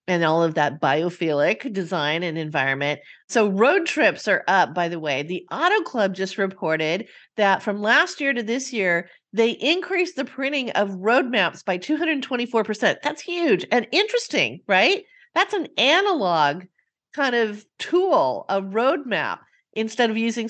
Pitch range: 185-255 Hz